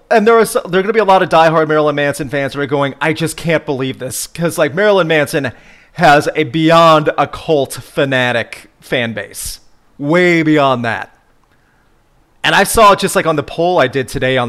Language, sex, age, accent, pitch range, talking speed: English, male, 30-49, American, 125-160 Hz, 205 wpm